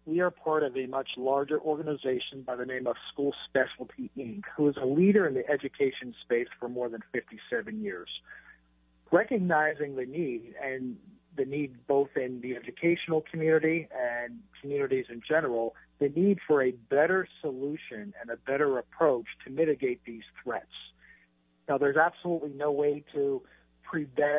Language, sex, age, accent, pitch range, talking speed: English, male, 50-69, American, 125-155 Hz, 155 wpm